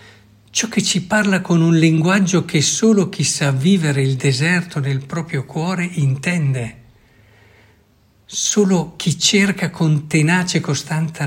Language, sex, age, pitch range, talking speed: Italian, male, 60-79, 110-150 Hz, 130 wpm